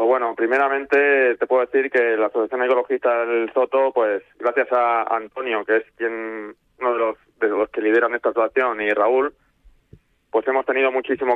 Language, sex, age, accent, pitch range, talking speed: Spanish, male, 20-39, Spanish, 120-135 Hz, 175 wpm